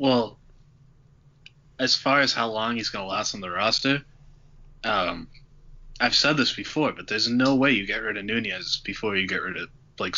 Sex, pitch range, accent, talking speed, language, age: male, 110-140 Hz, American, 195 wpm, English, 20-39